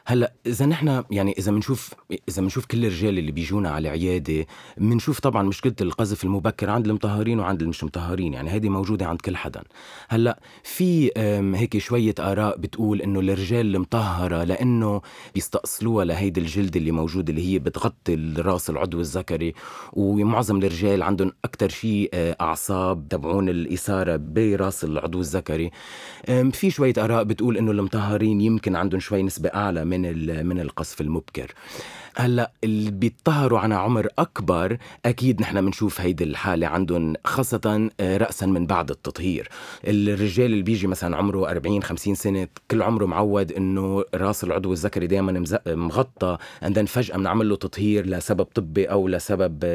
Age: 30-49